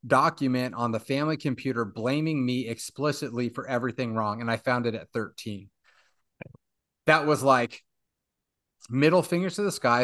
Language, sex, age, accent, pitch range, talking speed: English, male, 30-49, American, 110-140 Hz, 150 wpm